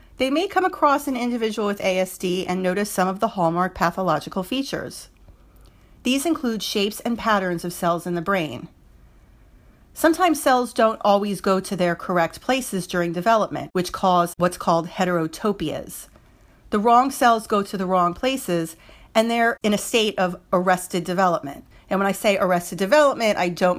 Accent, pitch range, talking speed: American, 175-235 Hz, 165 wpm